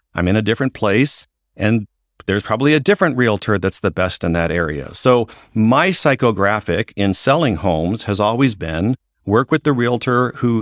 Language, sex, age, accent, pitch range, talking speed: English, male, 50-69, American, 95-125 Hz, 175 wpm